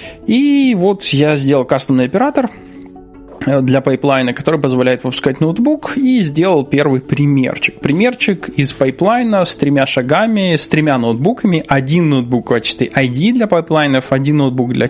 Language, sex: Russian, male